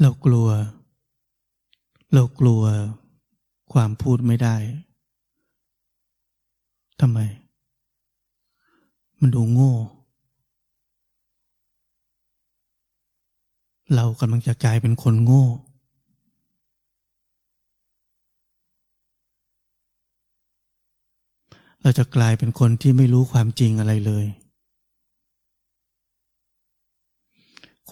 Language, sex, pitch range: Thai, male, 110-130 Hz